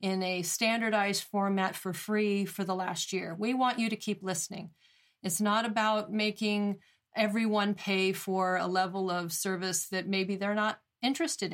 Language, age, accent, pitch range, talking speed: English, 40-59, American, 185-215 Hz, 165 wpm